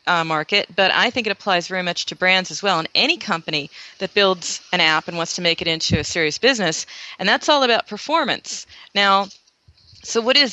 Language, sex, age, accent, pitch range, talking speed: English, female, 40-59, American, 170-210 Hz, 215 wpm